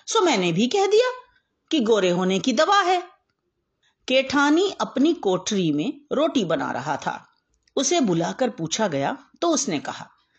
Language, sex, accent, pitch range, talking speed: Hindi, female, native, 200-300 Hz, 150 wpm